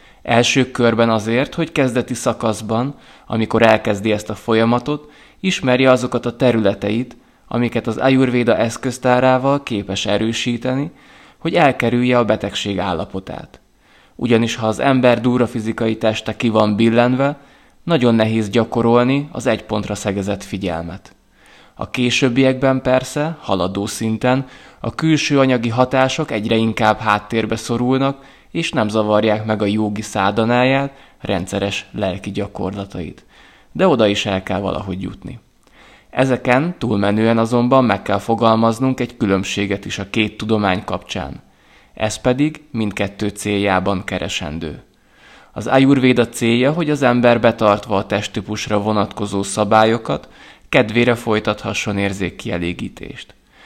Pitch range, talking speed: 105-125 Hz, 115 wpm